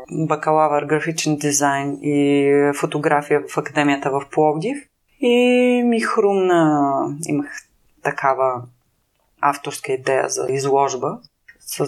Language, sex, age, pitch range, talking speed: Bulgarian, female, 30-49, 145-245 Hz, 95 wpm